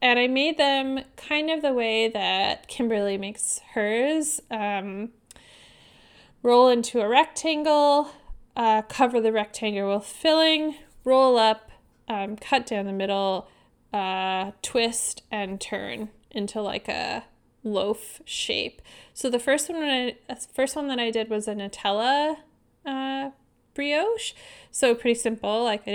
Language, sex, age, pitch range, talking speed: English, female, 10-29, 205-270 Hz, 135 wpm